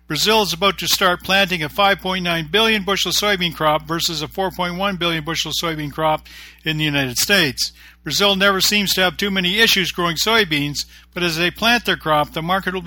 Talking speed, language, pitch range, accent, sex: 195 wpm, English, 150-195 Hz, American, male